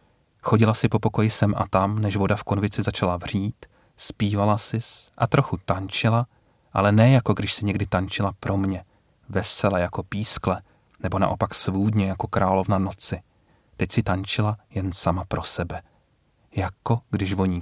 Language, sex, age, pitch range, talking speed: Czech, male, 40-59, 95-115 Hz, 155 wpm